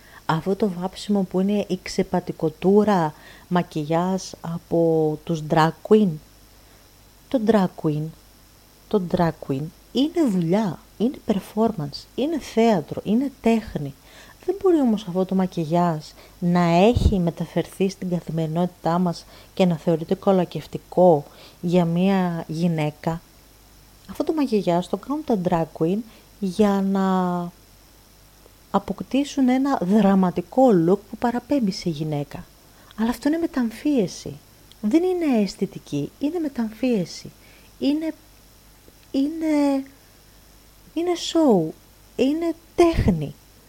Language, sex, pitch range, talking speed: Greek, female, 160-220 Hz, 105 wpm